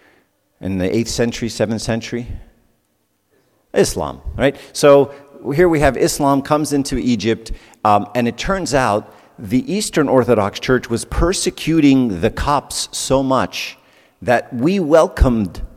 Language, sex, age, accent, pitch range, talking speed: English, male, 50-69, American, 100-135 Hz, 130 wpm